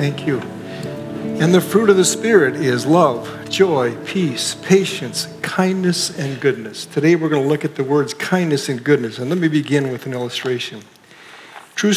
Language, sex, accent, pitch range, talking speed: English, male, American, 135-175 Hz, 175 wpm